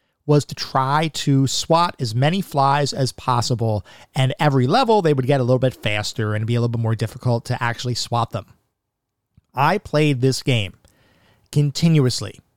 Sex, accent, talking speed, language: male, American, 170 wpm, English